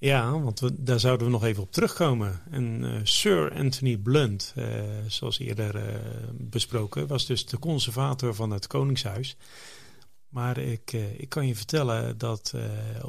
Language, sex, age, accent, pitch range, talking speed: Dutch, male, 40-59, Dutch, 115-135 Hz, 165 wpm